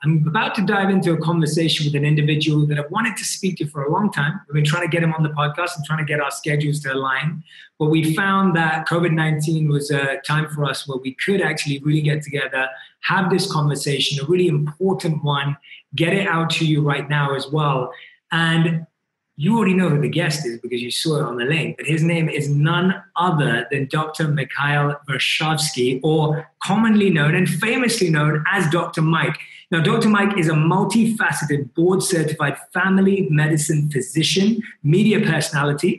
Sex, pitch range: male, 150-185 Hz